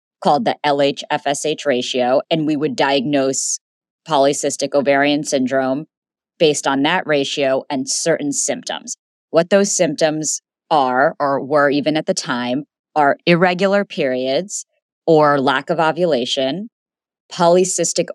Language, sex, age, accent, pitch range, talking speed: English, female, 30-49, American, 140-180 Hz, 120 wpm